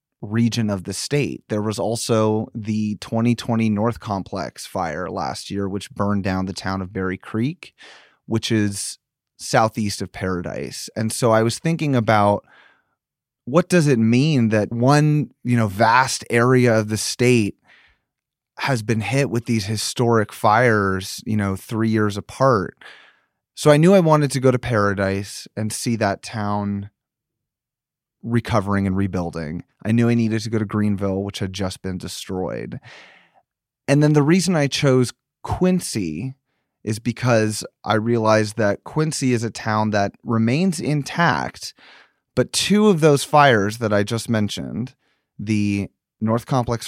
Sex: male